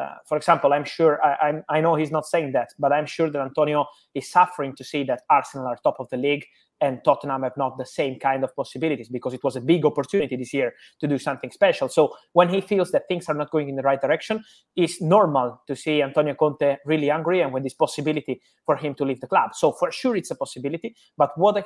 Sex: male